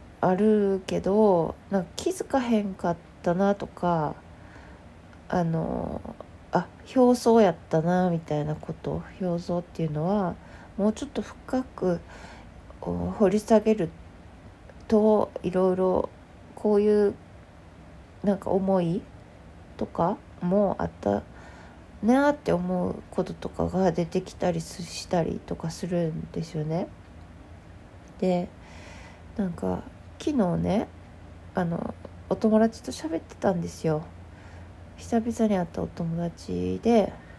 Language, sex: Japanese, female